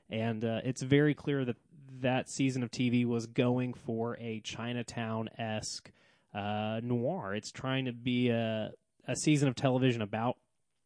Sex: male